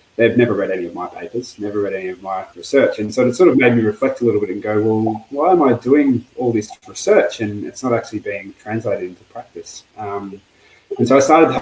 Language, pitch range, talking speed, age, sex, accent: English, 105-120 Hz, 250 wpm, 20-39, male, Australian